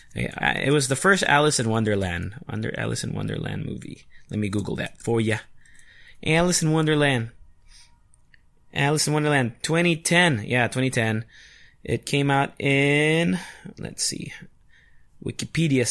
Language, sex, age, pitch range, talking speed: English, male, 20-39, 115-170 Hz, 130 wpm